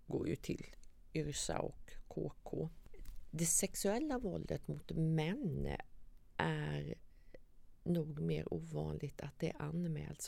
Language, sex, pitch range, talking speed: Swedish, female, 125-165 Hz, 105 wpm